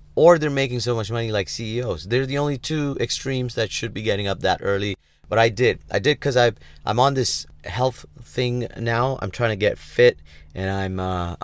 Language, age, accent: English, 30-49, American